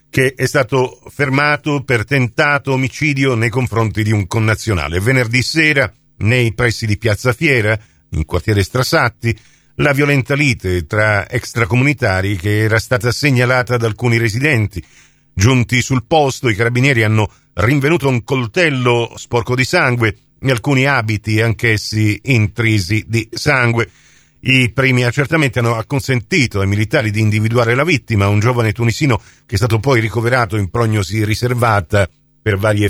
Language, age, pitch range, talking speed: Italian, 50-69, 105-140 Hz, 140 wpm